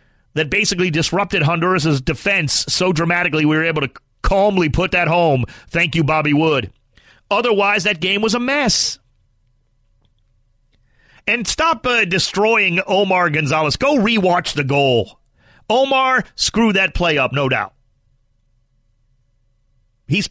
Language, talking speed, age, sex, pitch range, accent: English, 125 wpm, 40-59, male, 130-185 Hz, American